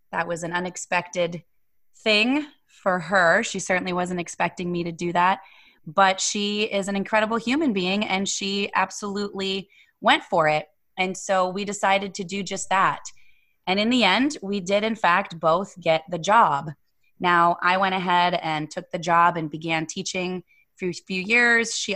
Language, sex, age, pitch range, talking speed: English, female, 20-39, 170-200 Hz, 175 wpm